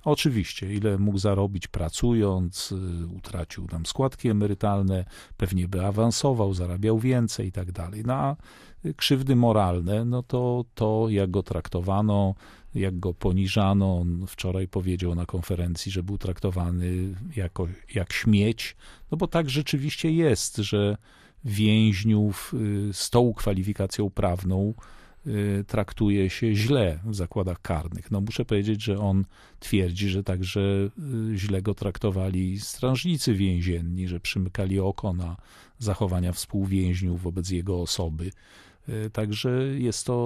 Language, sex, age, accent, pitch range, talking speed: Polish, male, 40-59, native, 95-110 Hz, 120 wpm